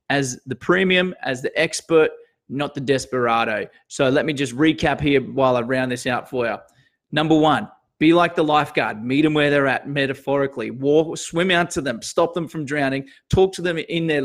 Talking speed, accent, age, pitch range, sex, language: 200 wpm, Australian, 20-39, 135-170 Hz, male, English